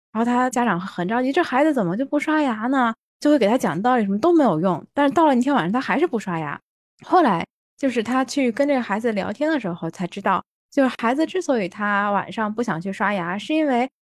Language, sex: Chinese, female